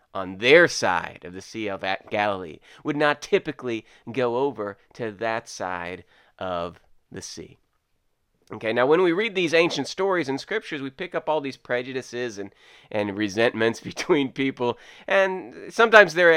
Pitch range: 115-155 Hz